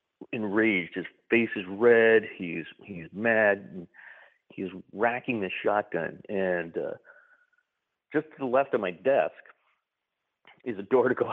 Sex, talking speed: male, 140 wpm